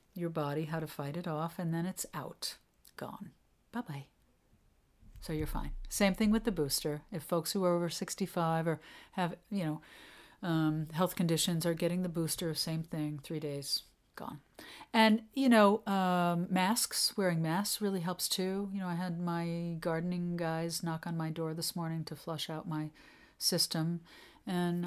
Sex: female